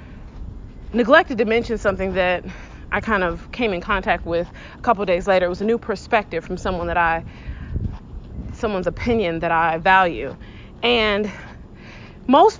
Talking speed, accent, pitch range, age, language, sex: 150 wpm, American, 195-270 Hz, 30-49, English, female